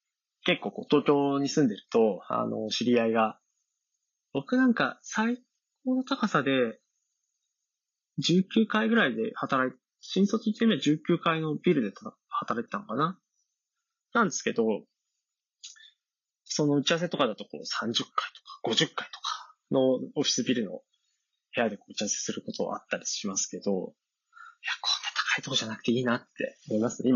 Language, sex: Japanese, male